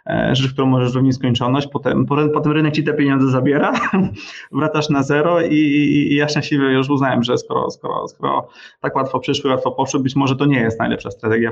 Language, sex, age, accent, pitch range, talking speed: Polish, male, 20-39, native, 125-150 Hz, 195 wpm